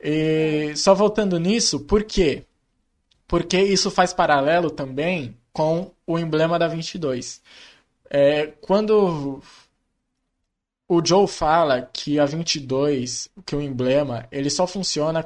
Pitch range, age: 145-185 Hz, 20-39